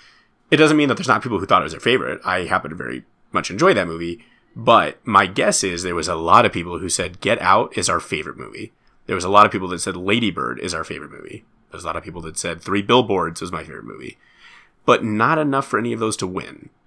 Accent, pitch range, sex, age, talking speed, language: American, 85-110 Hz, male, 30-49, 265 wpm, English